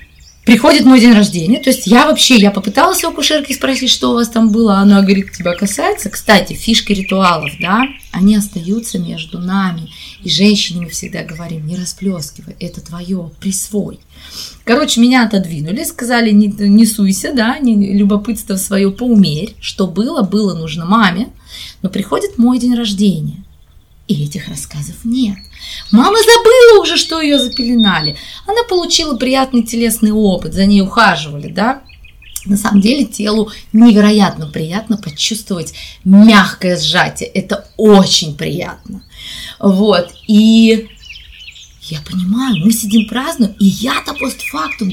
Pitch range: 180-235 Hz